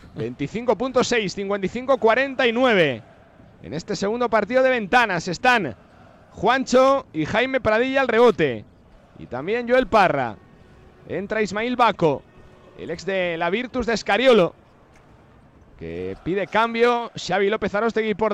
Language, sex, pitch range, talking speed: Spanish, male, 220-260 Hz, 110 wpm